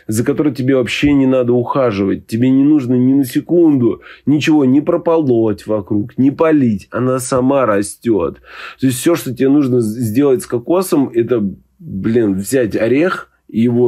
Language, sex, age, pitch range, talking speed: Russian, male, 20-39, 105-130 Hz, 155 wpm